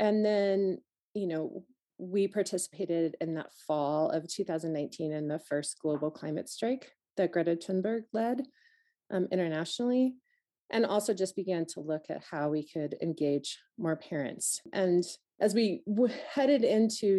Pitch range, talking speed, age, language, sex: 155-205 Hz, 145 wpm, 30-49, English, female